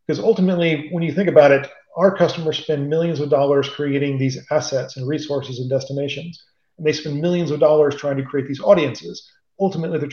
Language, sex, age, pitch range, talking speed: English, male, 40-59, 135-155 Hz, 195 wpm